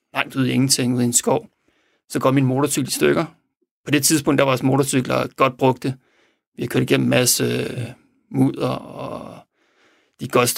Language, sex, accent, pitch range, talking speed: Danish, male, native, 130-160 Hz, 180 wpm